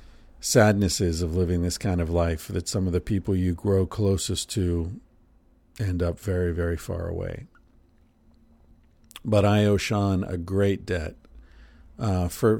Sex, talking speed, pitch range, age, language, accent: male, 145 wpm, 85-105 Hz, 50-69, English, American